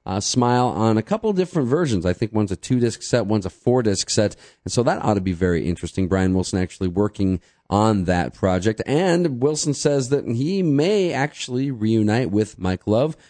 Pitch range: 95-130 Hz